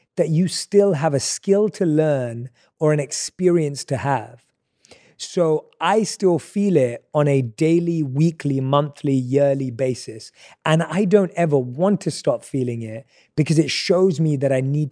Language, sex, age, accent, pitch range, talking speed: English, male, 30-49, British, 135-175 Hz, 165 wpm